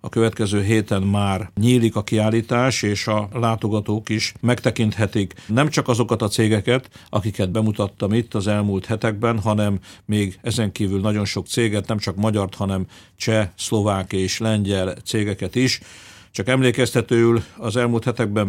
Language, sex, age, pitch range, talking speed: Hungarian, male, 50-69, 100-115 Hz, 145 wpm